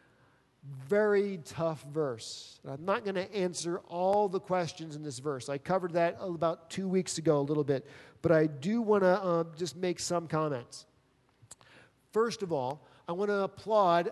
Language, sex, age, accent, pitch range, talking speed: English, male, 40-59, American, 155-220 Hz, 175 wpm